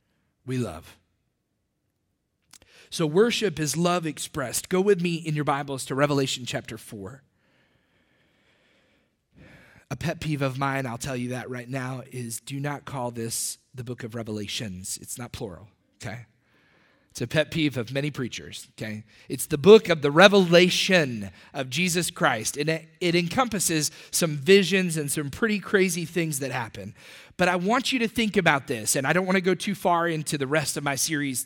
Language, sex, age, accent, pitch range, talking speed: English, male, 30-49, American, 115-165 Hz, 175 wpm